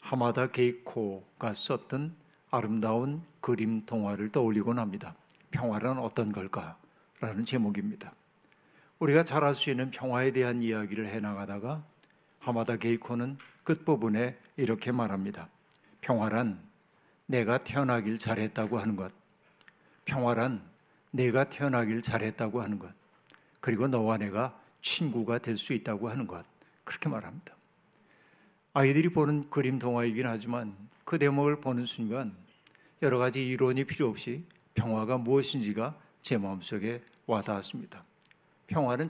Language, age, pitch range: Korean, 60-79, 115-145 Hz